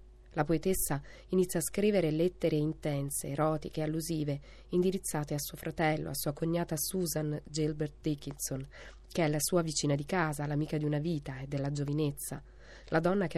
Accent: native